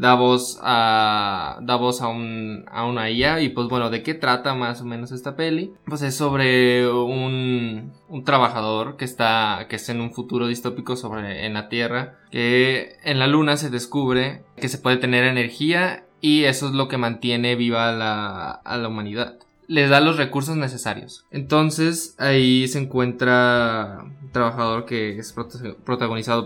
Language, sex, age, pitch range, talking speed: Spanish, male, 20-39, 115-140 Hz, 170 wpm